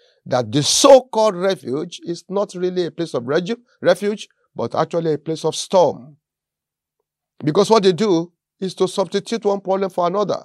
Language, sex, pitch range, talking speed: English, male, 145-195 Hz, 165 wpm